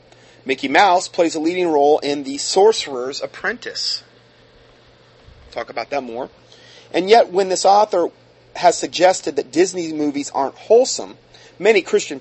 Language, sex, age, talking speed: English, male, 40-59, 140 wpm